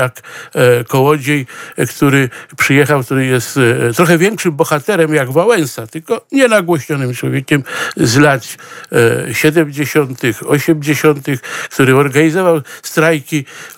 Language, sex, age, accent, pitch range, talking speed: Polish, male, 60-79, native, 140-175 Hz, 90 wpm